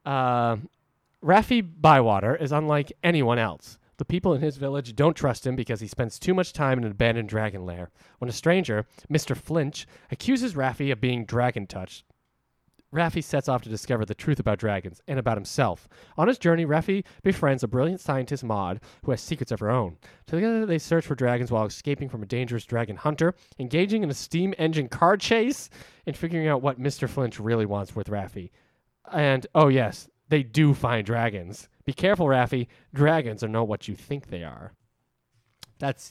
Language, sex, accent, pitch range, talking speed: English, male, American, 110-150 Hz, 185 wpm